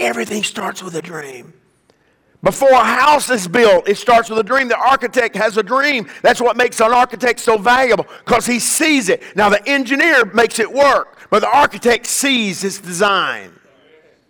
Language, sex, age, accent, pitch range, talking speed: English, male, 50-69, American, 185-250 Hz, 180 wpm